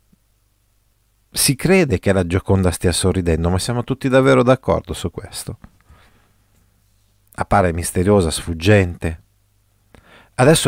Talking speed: 100 wpm